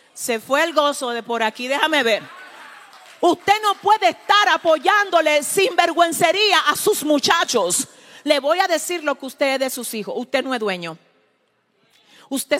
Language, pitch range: Spanish, 235-345 Hz